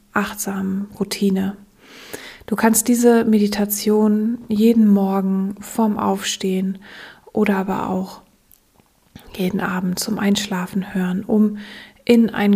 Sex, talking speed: female, 100 wpm